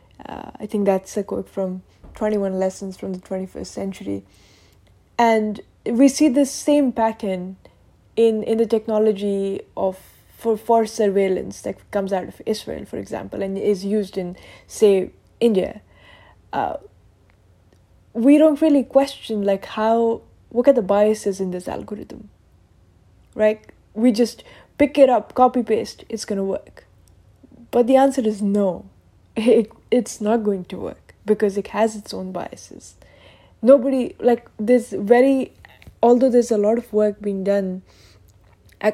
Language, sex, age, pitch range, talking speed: English, female, 10-29, 190-225 Hz, 155 wpm